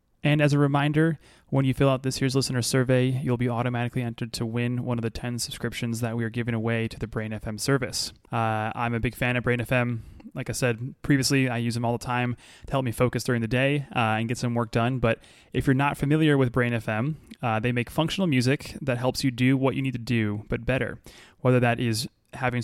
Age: 20-39